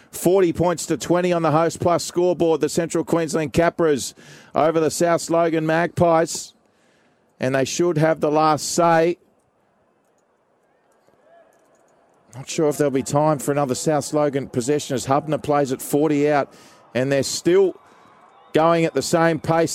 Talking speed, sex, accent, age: 150 wpm, male, Australian, 40-59